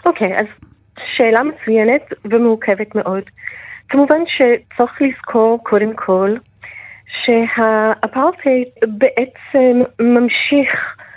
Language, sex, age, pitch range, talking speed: Hebrew, female, 30-49, 215-250 Hz, 80 wpm